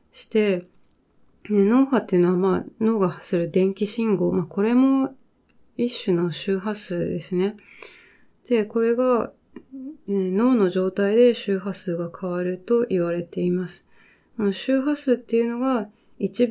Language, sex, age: Japanese, female, 20-39